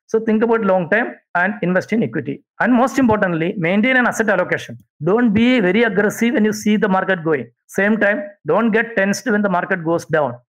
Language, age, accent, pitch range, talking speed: English, 60-79, Indian, 170-215 Hz, 205 wpm